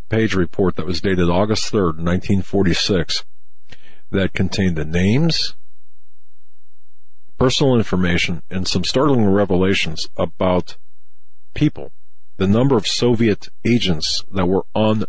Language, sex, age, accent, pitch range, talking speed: English, male, 40-59, American, 80-100 Hz, 110 wpm